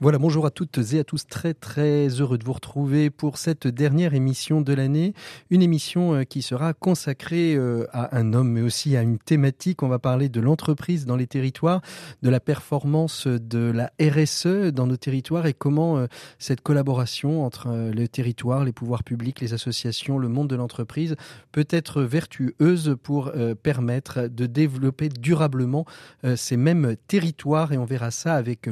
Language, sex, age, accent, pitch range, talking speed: French, male, 40-59, French, 125-155 Hz, 170 wpm